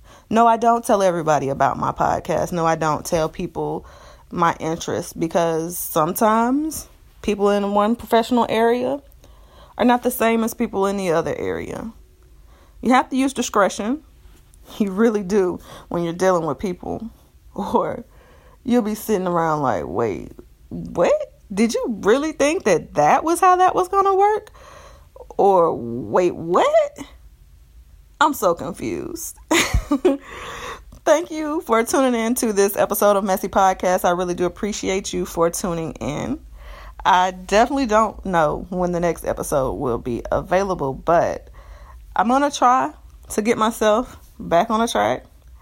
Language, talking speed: English, 150 wpm